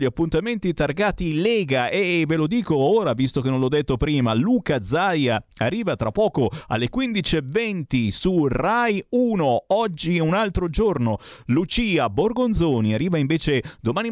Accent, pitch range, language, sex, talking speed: native, 120-185 Hz, Italian, male, 150 wpm